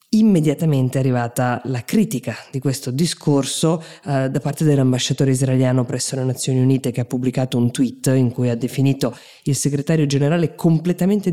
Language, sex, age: Italian, female, 20-39